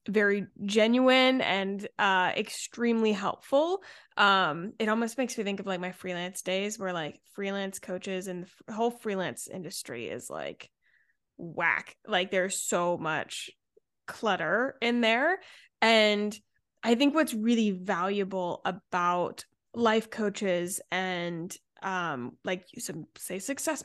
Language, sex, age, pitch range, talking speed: English, female, 20-39, 190-255 Hz, 130 wpm